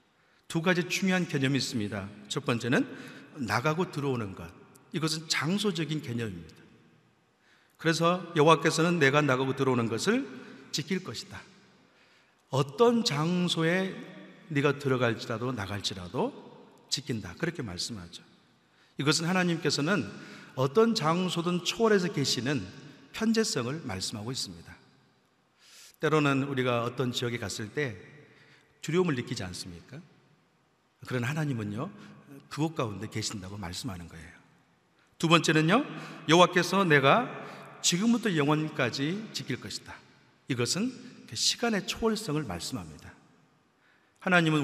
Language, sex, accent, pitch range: Korean, male, native, 120-175 Hz